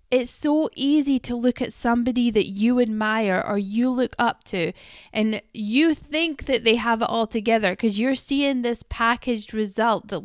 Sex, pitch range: female, 190-230 Hz